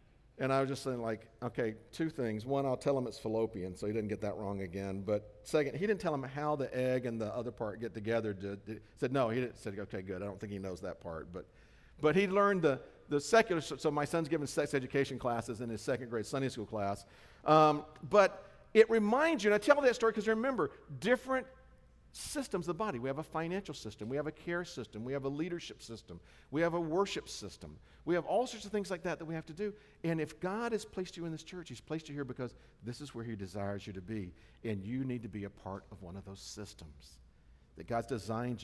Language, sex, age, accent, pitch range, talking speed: English, male, 50-69, American, 105-165 Hz, 250 wpm